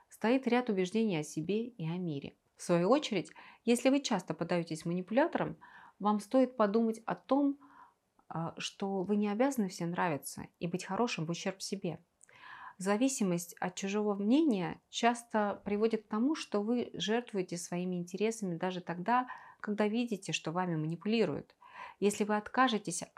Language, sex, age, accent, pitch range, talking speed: Russian, female, 30-49, native, 175-225 Hz, 145 wpm